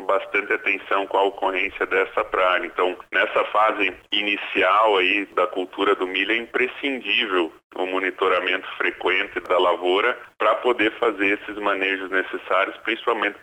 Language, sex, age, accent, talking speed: Portuguese, male, 10-29, Brazilian, 135 wpm